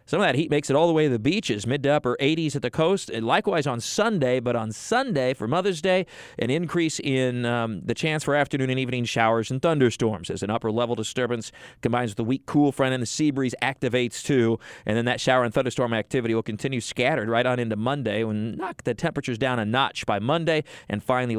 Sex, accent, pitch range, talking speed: male, American, 115-150 Hz, 235 wpm